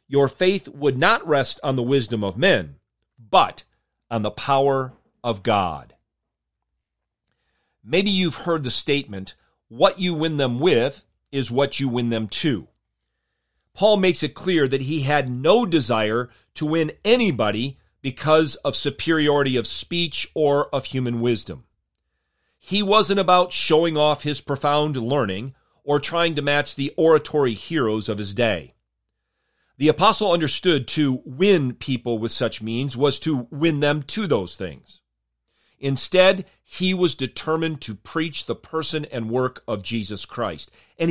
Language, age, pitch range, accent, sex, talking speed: English, 40-59, 115-160 Hz, American, male, 145 wpm